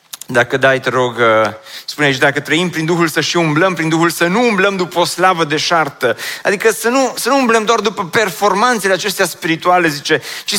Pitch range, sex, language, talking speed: 165-210 Hz, male, Romanian, 205 wpm